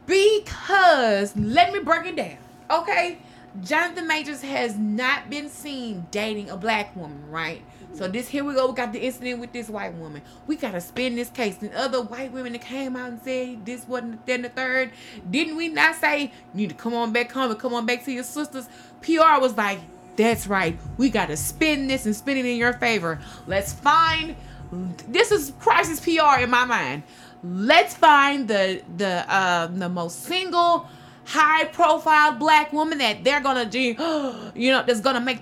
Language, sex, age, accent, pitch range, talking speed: English, female, 20-39, American, 205-300 Hz, 190 wpm